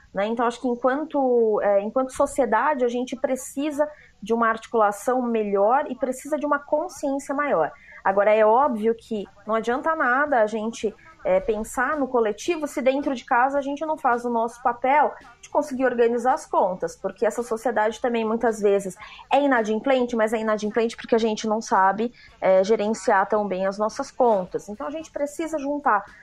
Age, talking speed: 20-39, 170 wpm